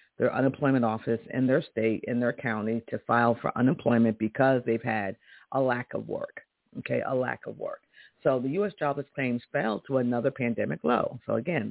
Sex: female